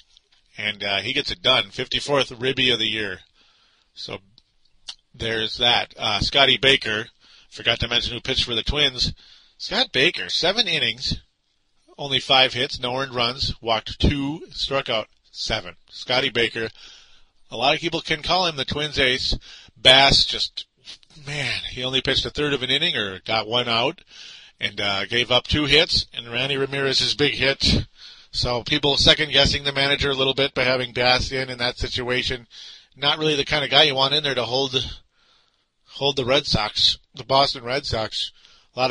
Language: English